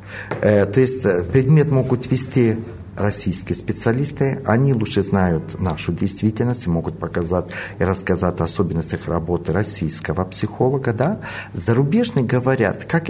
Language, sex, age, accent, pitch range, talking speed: Russian, male, 50-69, native, 105-150 Hz, 115 wpm